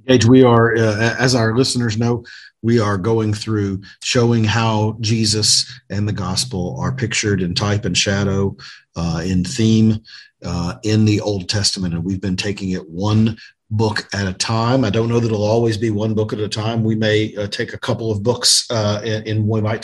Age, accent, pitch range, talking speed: 50-69, American, 100-115 Hz, 195 wpm